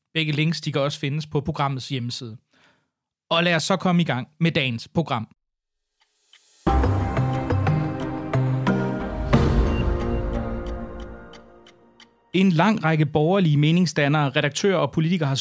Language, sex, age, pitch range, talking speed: Danish, male, 30-49, 140-175 Hz, 110 wpm